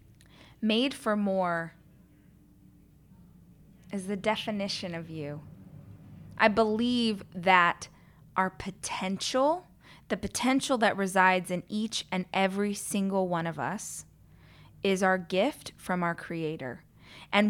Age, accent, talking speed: 20-39, American, 110 wpm